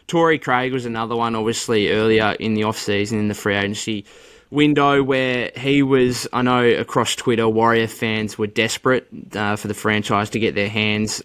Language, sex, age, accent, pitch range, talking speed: English, male, 20-39, Australian, 110-130 Hz, 180 wpm